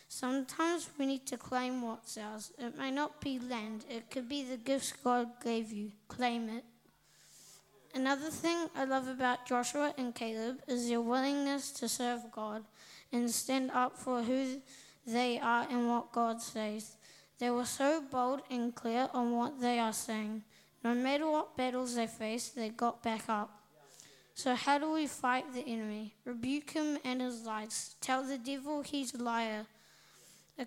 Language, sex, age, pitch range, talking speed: English, female, 20-39, 235-270 Hz, 170 wpm